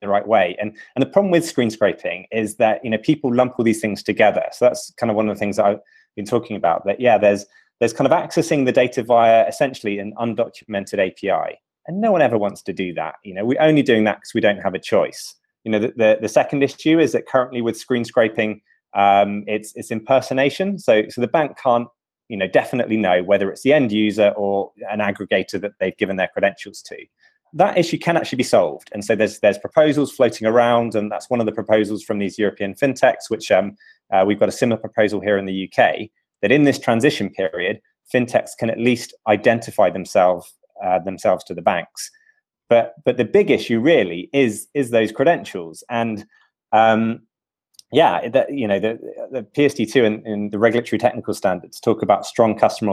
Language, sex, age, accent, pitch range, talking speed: English, male, 20-39, British, 105-130 Hz, 210 wpm